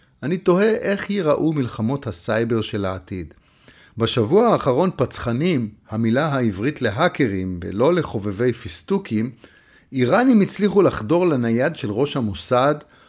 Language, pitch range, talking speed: Hebrew, 110-155 Hz, 110 wpm